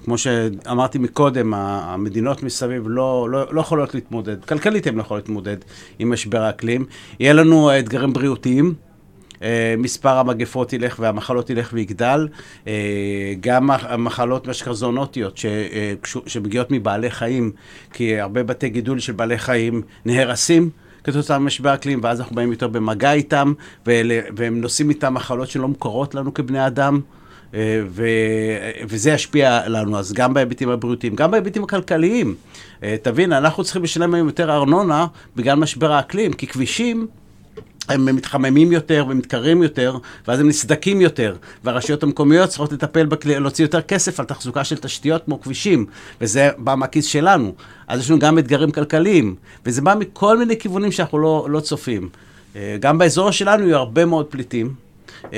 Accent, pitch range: native, 115-150 Hz